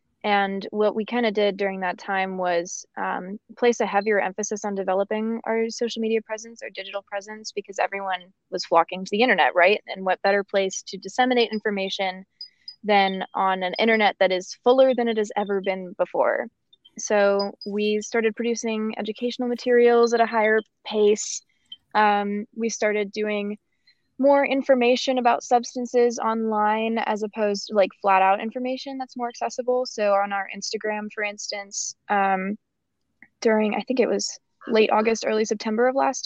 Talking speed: 165 wpm